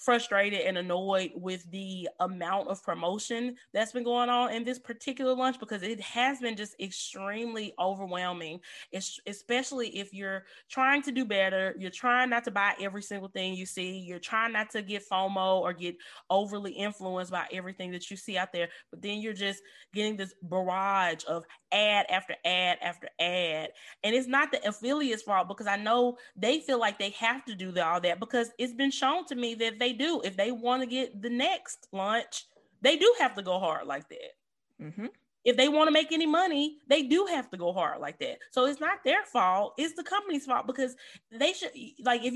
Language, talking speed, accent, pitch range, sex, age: English, 205 wpm, American, 190-255 Hz, female, 20-39